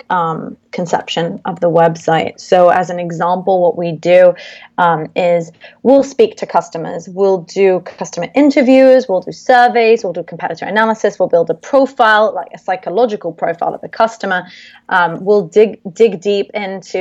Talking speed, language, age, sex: 160 wpm, English, 20-39, female